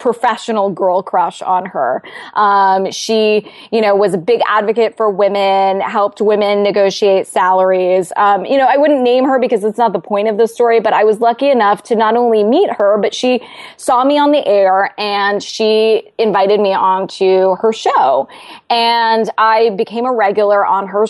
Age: 20-39